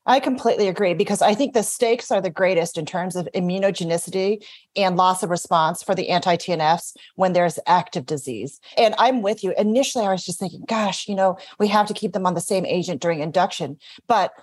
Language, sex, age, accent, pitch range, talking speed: English, female, 30-49, American, 170-205 Hz, 210 wpm